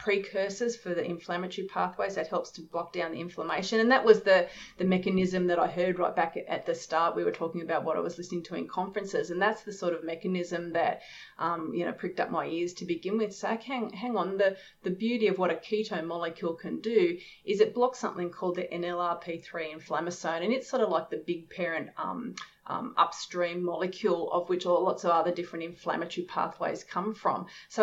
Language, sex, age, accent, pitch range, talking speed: English, female, 30-49, Australian, 175-210 Hz, 220 wpm